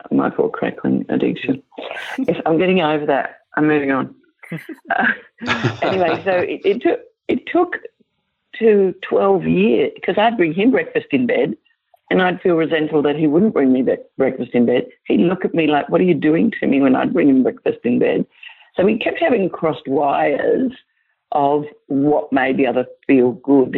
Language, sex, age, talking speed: English, female, 50-69, 185 wpm